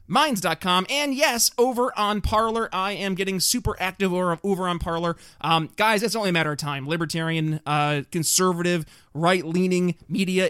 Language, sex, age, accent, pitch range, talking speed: English, male, 20-39, American, 155-190 Hz, 165 wpm